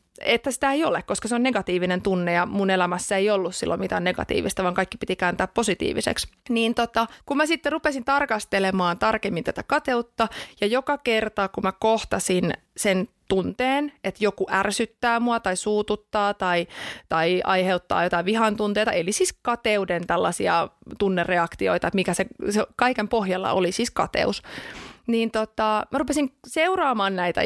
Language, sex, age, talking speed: Finnish, female, 30-49, 160 wpm